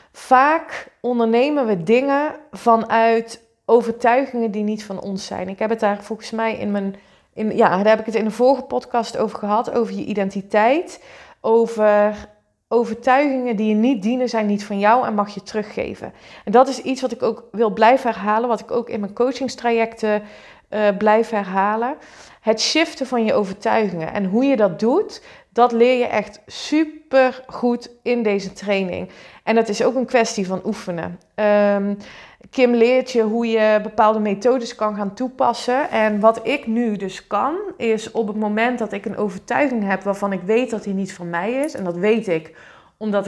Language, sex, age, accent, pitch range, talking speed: Dutch, female, 30-49, Dutch, 205-245 Hz, 185 wpm